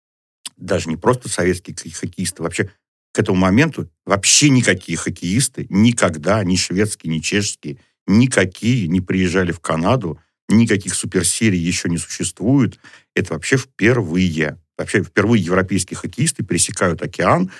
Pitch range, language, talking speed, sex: 80-100 Hz, Russian, 125 wpm, male